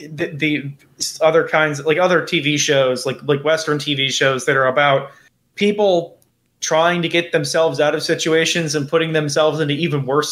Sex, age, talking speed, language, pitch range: male, 20-39, 175 wpm, English, 135-165 Hz